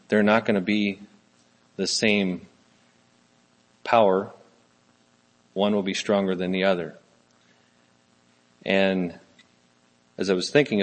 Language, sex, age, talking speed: English, male, 40-59, 110 wpm